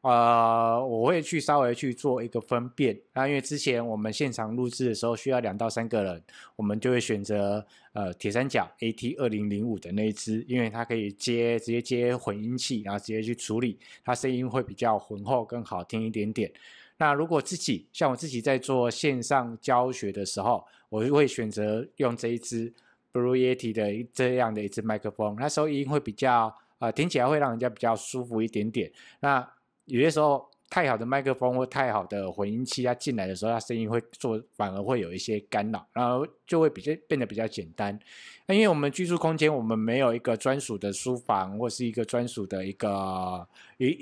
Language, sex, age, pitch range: Chinese, male, 20-39, 110-130 Hz